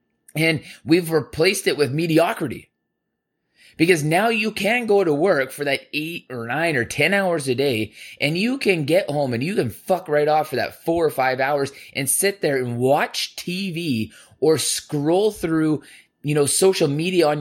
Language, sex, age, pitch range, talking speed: English, male, 20-39, 140-185 Hz, 185 wpm